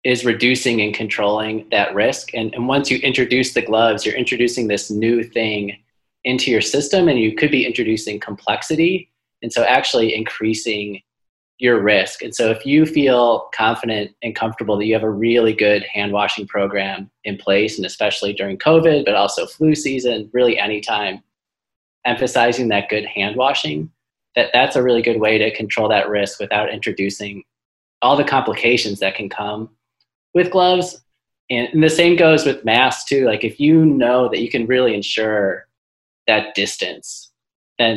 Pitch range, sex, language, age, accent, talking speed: 105-120 Hz, male, English, 30-49, American, 165 wpm